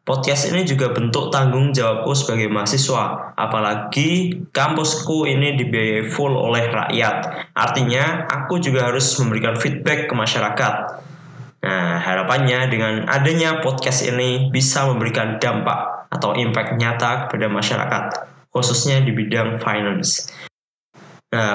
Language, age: Indonesian, 10-29